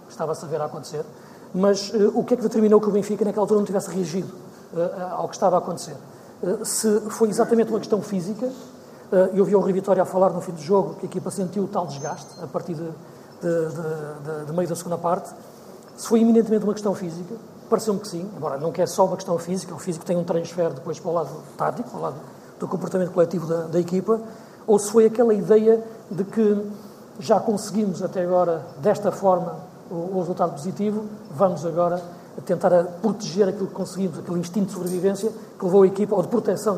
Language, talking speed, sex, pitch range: Portuguese, 215 wpm, male, 175-205 Hz